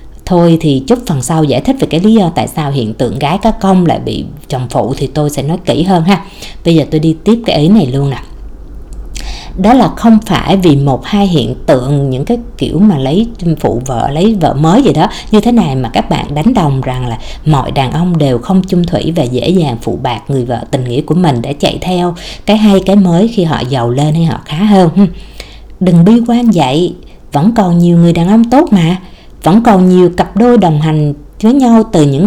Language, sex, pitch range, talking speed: Vietnamese, female, 145-210 Hz, 235 wpm